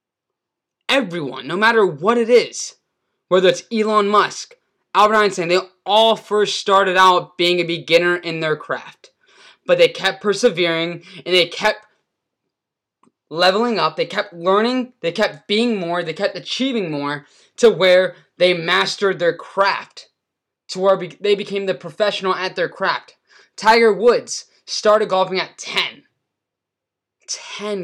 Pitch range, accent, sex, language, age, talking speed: 185-235 Hz, American, male, English, 20-39, 140 wpm